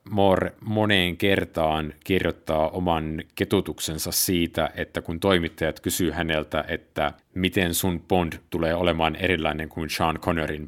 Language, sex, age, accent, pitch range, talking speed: Finnish, male, 50-69, native, 85-105 Hz, 125 wpm